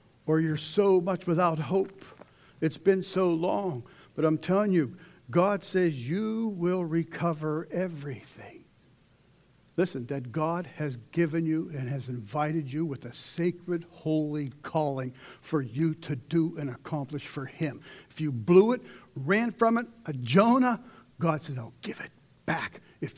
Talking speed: 155 wpm